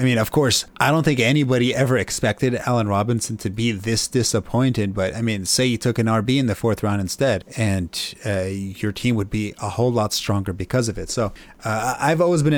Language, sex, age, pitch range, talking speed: English, male, 30-49, 105-130 Hz, 225 wpm